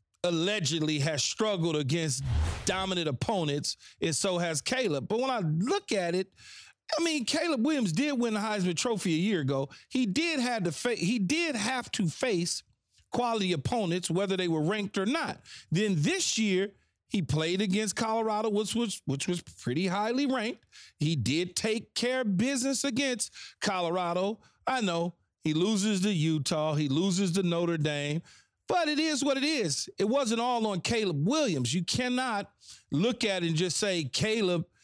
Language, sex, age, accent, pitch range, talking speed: English, male, 40-59, American, 165-230 Hz, 170 wpm